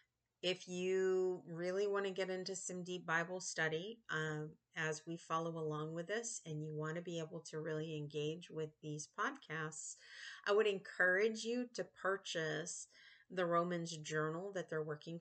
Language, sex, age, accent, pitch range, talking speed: English, female, 30-49, American, 155-185 Hz, 165 wpm